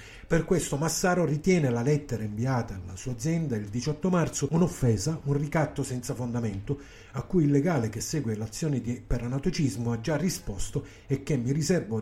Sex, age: male, 50-69